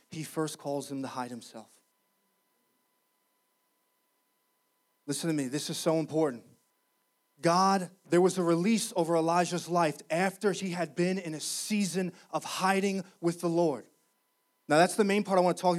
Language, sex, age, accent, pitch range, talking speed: English, male, 30-49, American, 175-230 Hz, 165 wpm